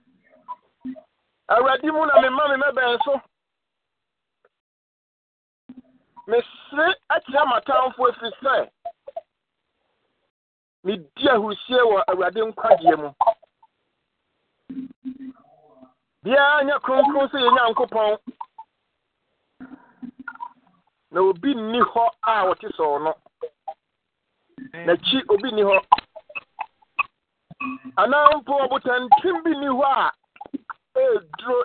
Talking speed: 100 wpm